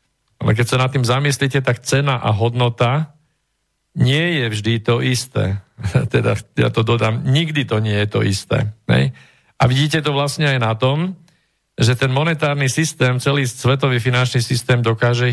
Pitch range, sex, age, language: 110-140 Hz, male, 50-69, Slovak